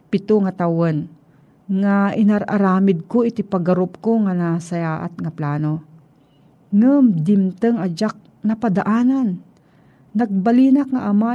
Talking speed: 115 wpm